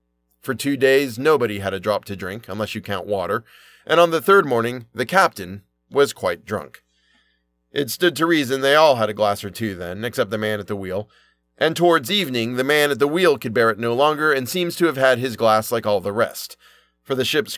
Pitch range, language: 100-145 Hz, English